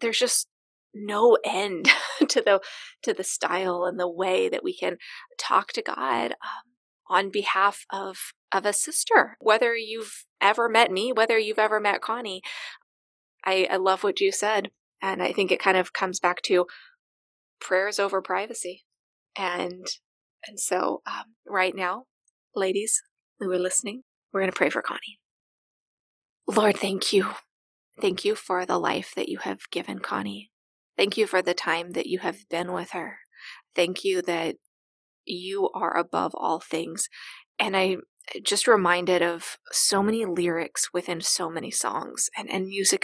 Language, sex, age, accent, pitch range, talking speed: English, female, 20-39, American, 180-235 Hz, 160 wpm